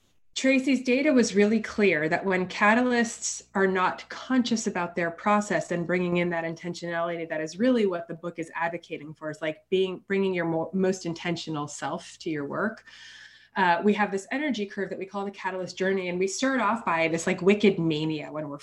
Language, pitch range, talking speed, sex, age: English, 170-215 Hz, 205 wpm, female, 20-39